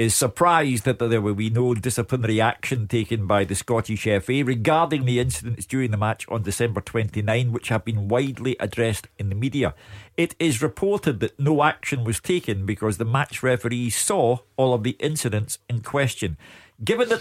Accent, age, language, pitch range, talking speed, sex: British, 50-69, English, 110-150 Hz, 180 wpm, male